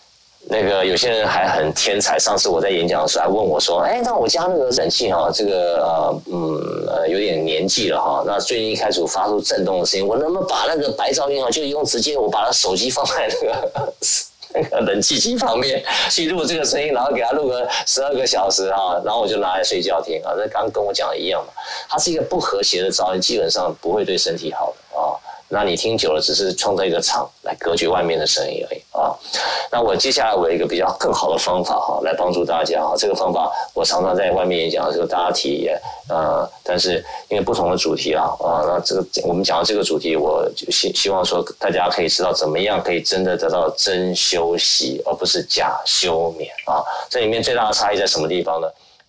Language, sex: Chinese, male